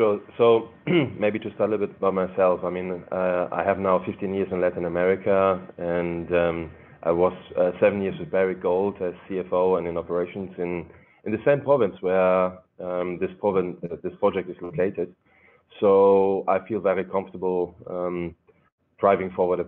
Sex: male